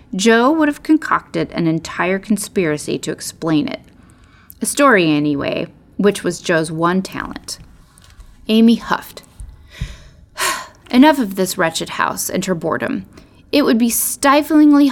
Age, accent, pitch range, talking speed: 30-49, American, 165-230 Hz, 130 wpm